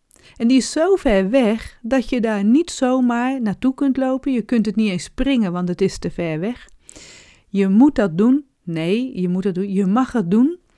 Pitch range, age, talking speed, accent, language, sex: 185-255 Hz, 40-59, 215 wpm, Dutch, Dutch, female